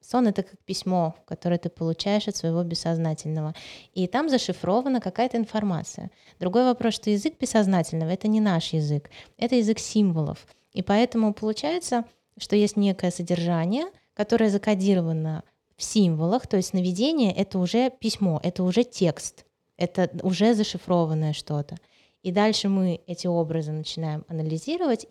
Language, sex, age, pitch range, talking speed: Russian, female, 20-39, 175-215 Hz, 140 wpm